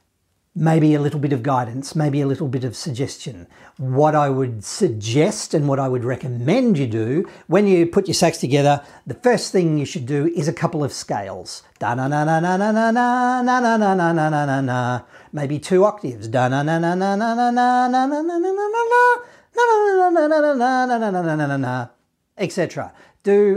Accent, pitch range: Australian, 140-190 Hz